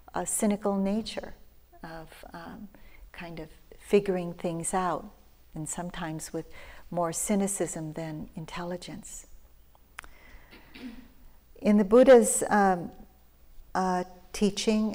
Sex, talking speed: female, 90 wpm